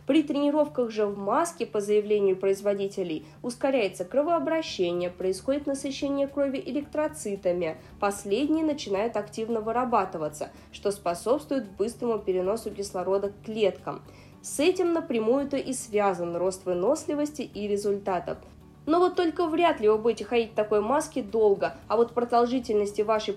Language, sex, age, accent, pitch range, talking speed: Russian, female, 20-39, native, 195-275 Hz, 130 wpm